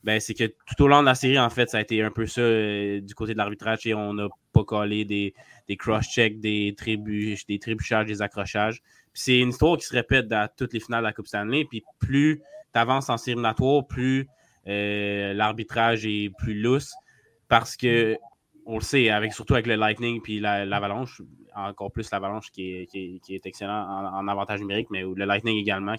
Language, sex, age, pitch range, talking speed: French, male, 20-39, 105-120 Hz, 210 wpm